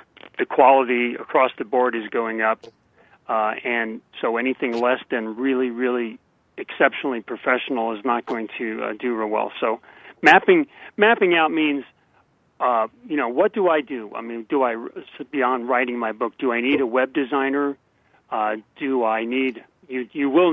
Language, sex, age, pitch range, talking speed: English, male, 40-59, 120-135 Hz, 170 wpm